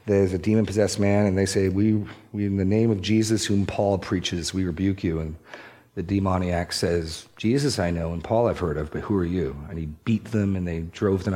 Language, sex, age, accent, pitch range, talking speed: English, male, 40-59, American, 95-115 Hz, 230 wpm